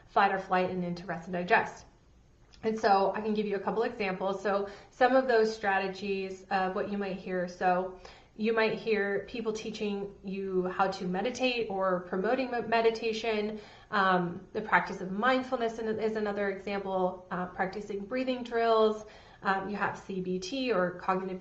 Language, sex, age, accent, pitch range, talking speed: English, female, 30-49, American, 190-225 Hz, 170 wpm